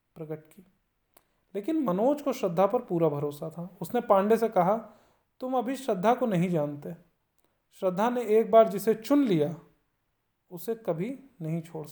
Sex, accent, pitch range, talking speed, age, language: male, native, 170-235 Hz, 155 wpm, 40-59, Hindi